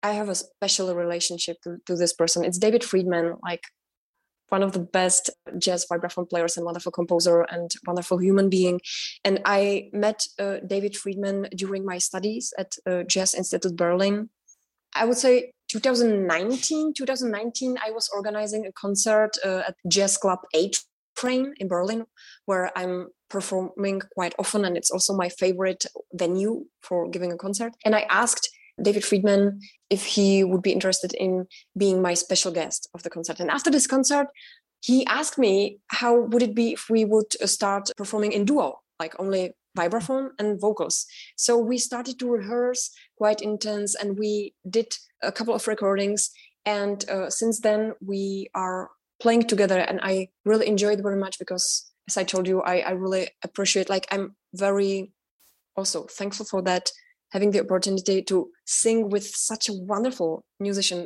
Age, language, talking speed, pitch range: 20-39, English, 165 wpm, 185-215 Hz